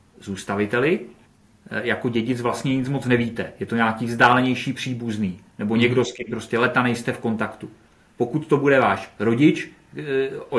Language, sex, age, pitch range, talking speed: Czech, male, 40-59, 110-130 Hz, 155 wpm